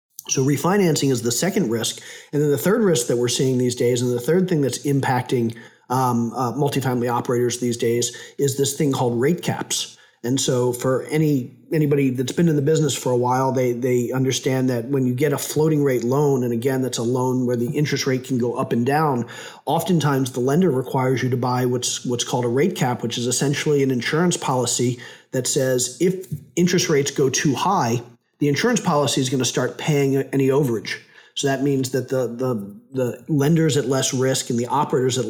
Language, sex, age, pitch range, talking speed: English, male, 40-59, 125-145 Hz, 210 wpm